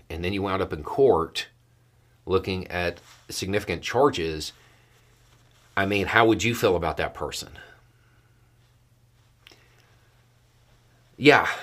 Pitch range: 85-115 Hz